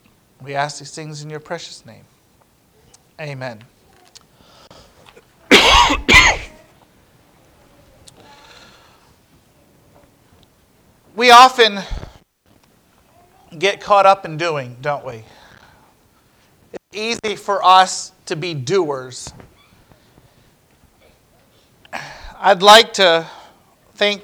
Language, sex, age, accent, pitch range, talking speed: English, male, 40-59, American, 150-195 Hz, 70 wpm